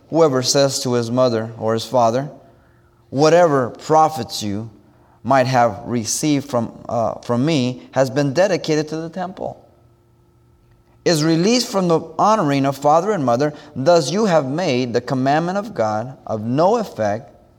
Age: 30-49